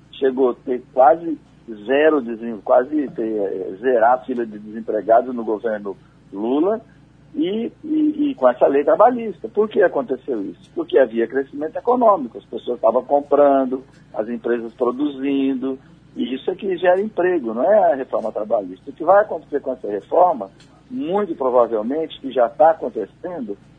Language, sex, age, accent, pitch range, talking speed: Portuguese, male, 50-69, Brazilian, 130-180 Hz, 160 wpm